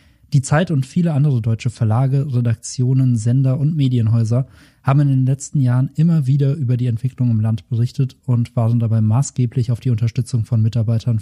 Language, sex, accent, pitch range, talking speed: German, male, German, 120-140 Hz, 175 wpm